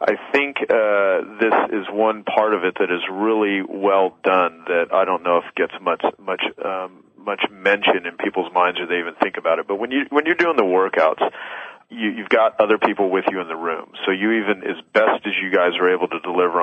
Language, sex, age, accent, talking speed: English, male, 40-59, American, 230 wpm